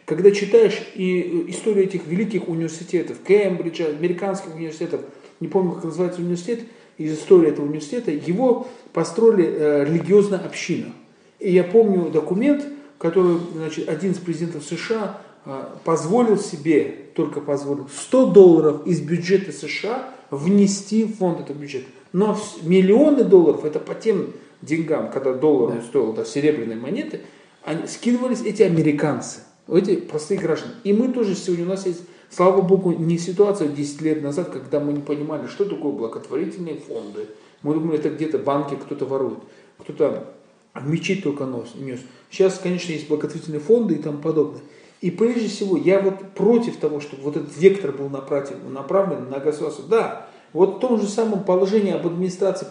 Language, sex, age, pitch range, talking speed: Russian, male, 40-59, 155-200 Hz, 155 wpm